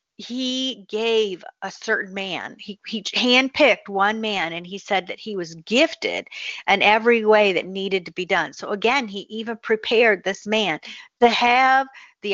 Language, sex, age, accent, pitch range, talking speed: English, female, 50-69, American, 185-235 Hz, 170 wpm